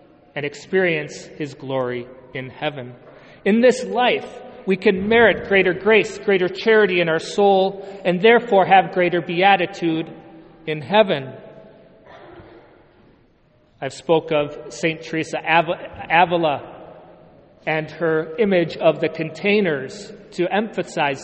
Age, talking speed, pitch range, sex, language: 40-59, 115 wpm, 155-195 Hz, male, English